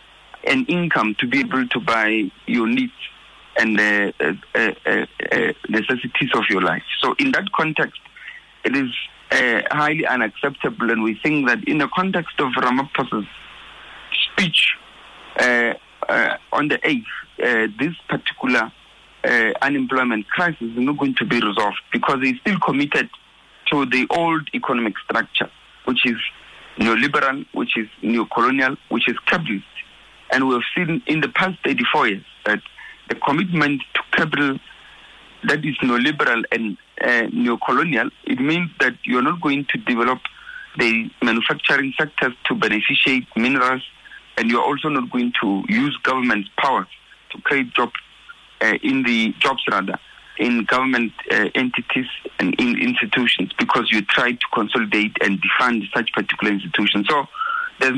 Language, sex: English, male